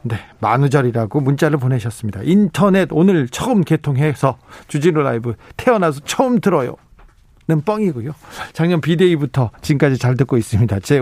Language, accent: Korean, native